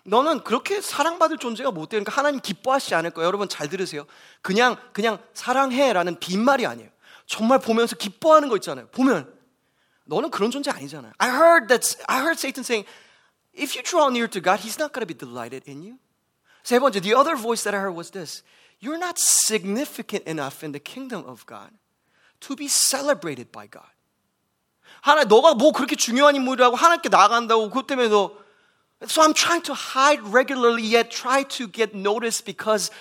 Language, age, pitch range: English, 20-39, 195-265 Hz